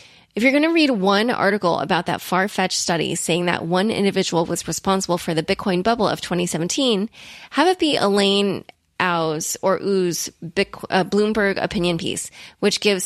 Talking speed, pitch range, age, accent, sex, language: 160 wpm, 180-215 Hz, 20-39, American, female, English